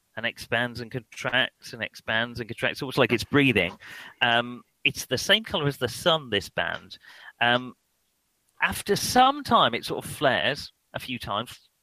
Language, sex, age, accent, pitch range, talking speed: English, male, 40-59, British, 115-150 Hz, 165 wpm